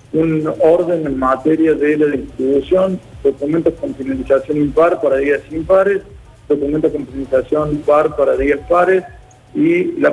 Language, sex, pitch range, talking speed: Spanish, male, 135-165 Hz, 135 wpm